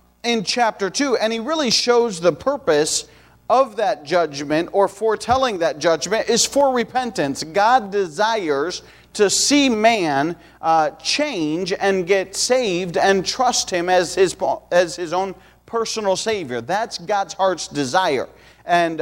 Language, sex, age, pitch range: English, male, 40-59, 180-240 Hz